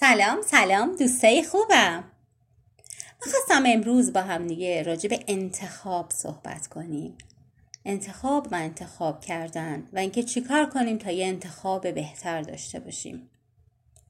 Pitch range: 165-255 Hz